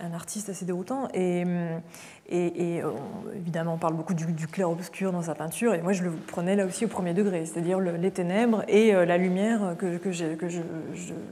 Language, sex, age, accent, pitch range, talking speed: French, female, 20-39, French, 175-205 Hz, 215 wpm